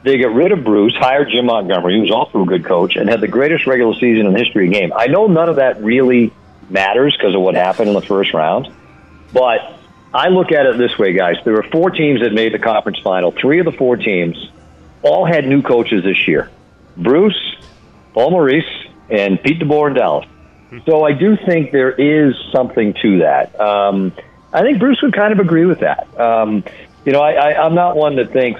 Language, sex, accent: English, male, American